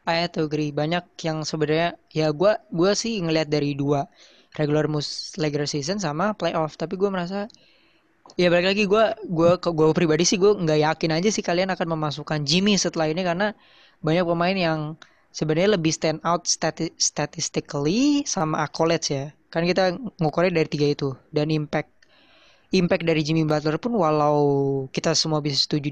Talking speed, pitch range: 165 wpm, 150-185 Hz